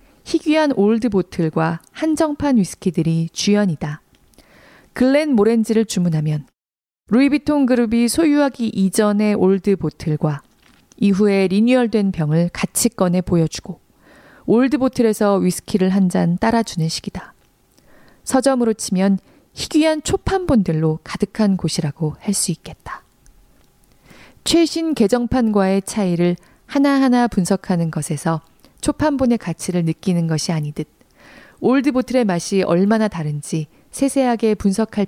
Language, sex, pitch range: Korean, female, 170-235 Hz